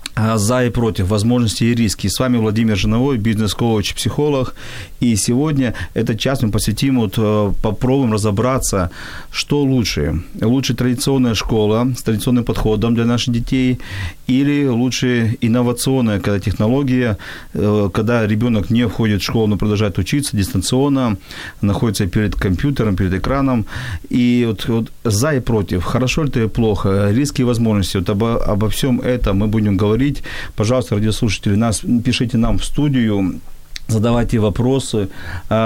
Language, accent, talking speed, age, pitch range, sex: Ukrainian, native, 140 wpm, 40-59, 105-125 Hz, male